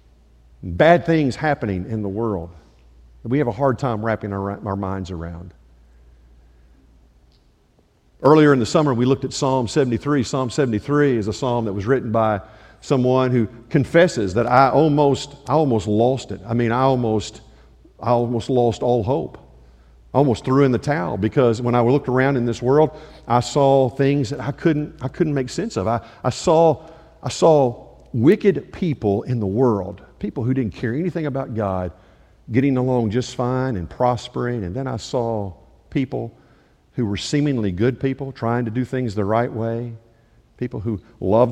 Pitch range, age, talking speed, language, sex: 100-140 Hz, 50-69, 175 wpm, English, male